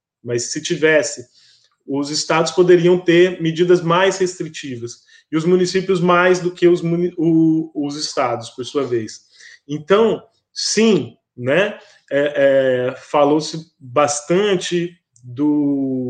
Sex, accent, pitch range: male, Brazilian, 135-175 Hz